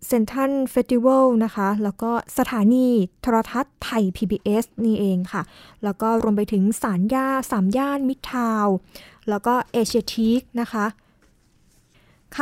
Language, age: Thai, 20-39